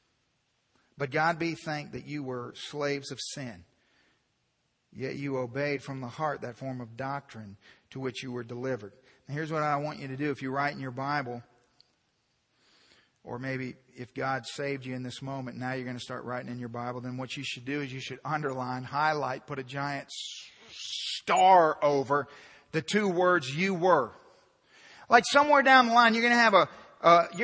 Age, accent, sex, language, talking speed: 40-59, American, male, English, 200 wpm